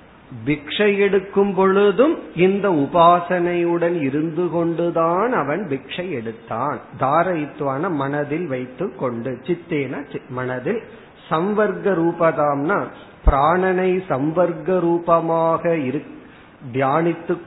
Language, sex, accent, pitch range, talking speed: Tamil, male, native, 140-175 Hz, 70 wpm